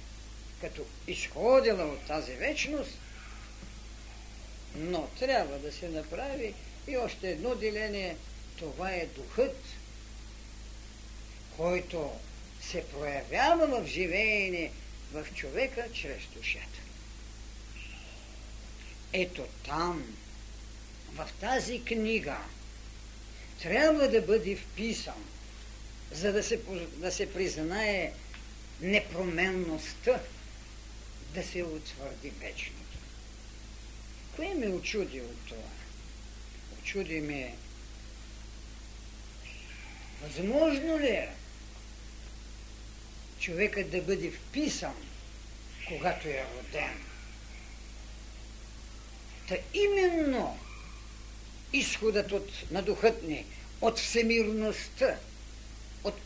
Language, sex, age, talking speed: Bulgarian, female, 50-69, 75 wpm